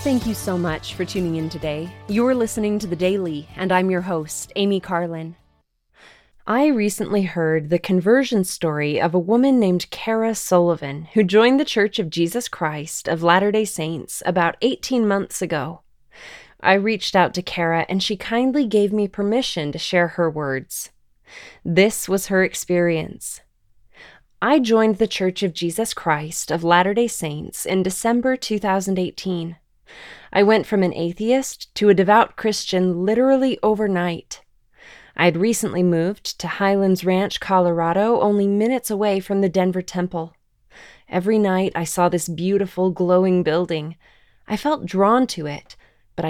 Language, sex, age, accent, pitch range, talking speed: English, female, 20-39, American, 170-215 Hz, 150 wpm